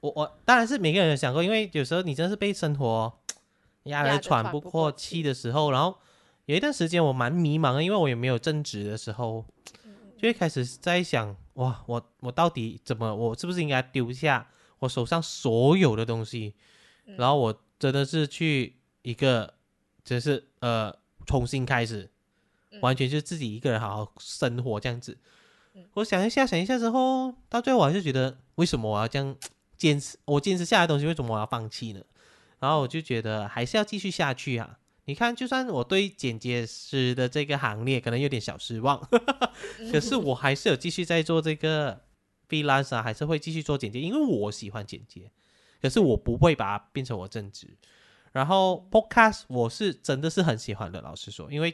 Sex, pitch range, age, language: male, 115-165 Hz, 20-39, Chinese